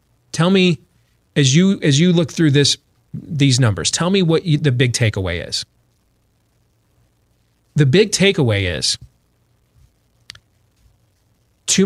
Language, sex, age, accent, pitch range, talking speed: English, male, 30-49, American, 120-155 Hz, 120 wpm